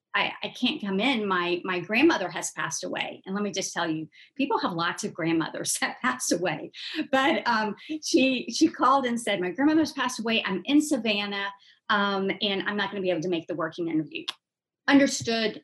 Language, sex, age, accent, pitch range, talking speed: English, female, 40-59, American, 185-235 Hz, 200 wpm